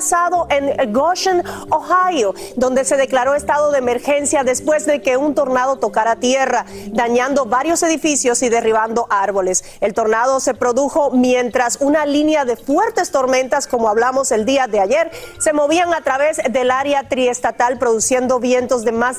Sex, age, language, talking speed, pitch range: female, 40-59, Spanish, 155 wpm, 220-270 Hz